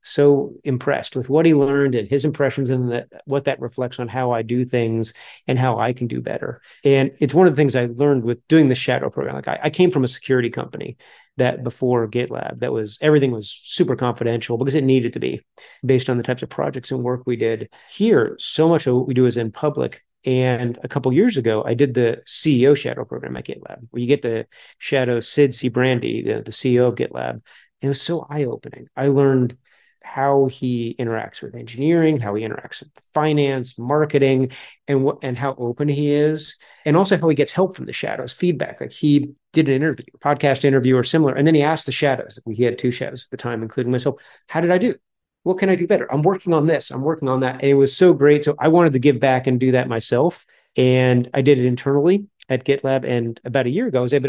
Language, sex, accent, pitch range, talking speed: English, male, American, 125-145 Hz, 235 wpm